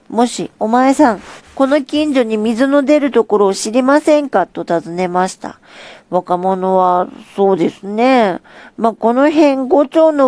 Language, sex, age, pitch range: Japanese, female, 40-59, 195-275 Hz